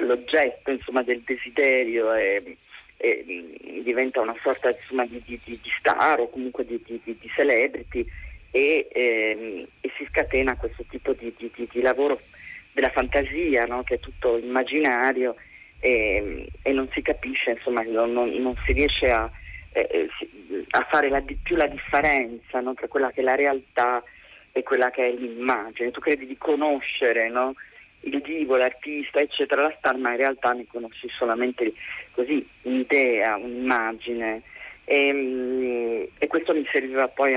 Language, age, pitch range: Italian, 40-59, 120-140 Hz